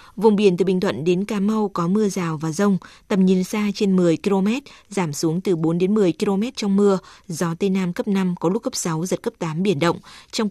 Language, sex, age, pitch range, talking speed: Vietnamese, female, 20-39, 175-210 Hz, 245 wpm